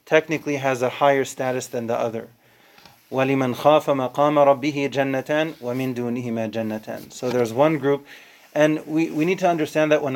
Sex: male